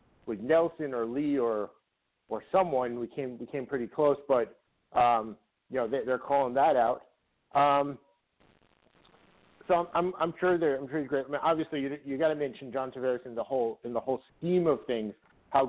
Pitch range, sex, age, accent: 120-150 Hz, male, 50-69, American